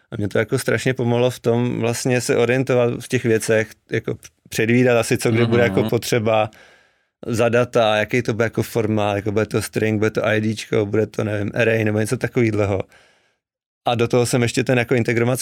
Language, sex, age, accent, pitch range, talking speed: Czech, male, 30-49, native, 110-120 Hz, 200 wpm